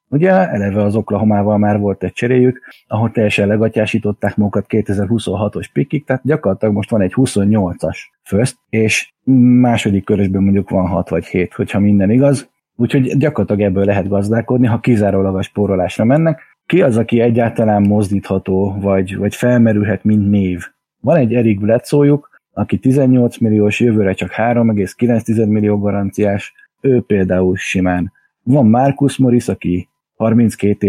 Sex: male